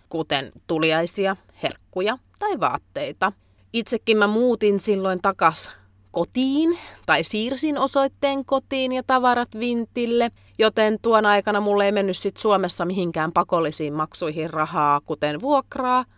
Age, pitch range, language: 30-49, 145-215 Hz, Finnish